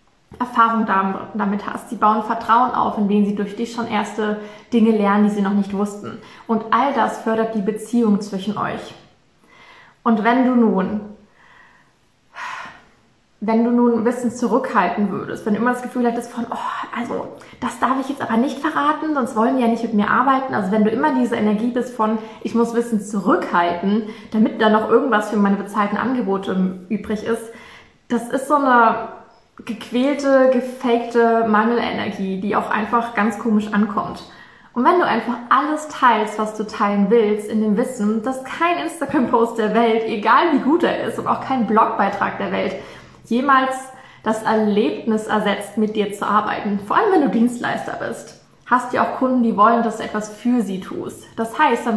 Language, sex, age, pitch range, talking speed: German, female, 20-39, 210-245 Hz, 180 wpm